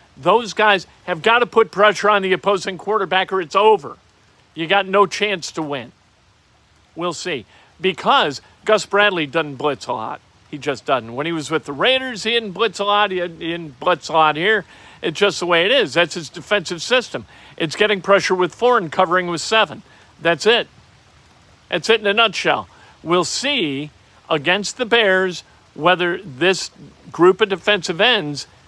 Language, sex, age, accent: English, male, 50-69, American